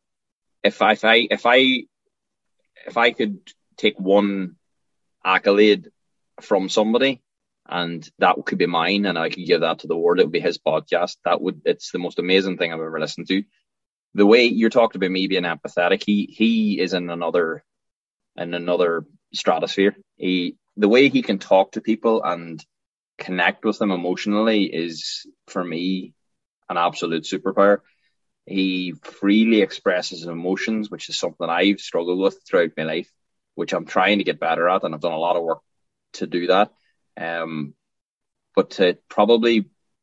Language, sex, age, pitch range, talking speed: English, male, 20-39, 90-110 Hz, 170 wpm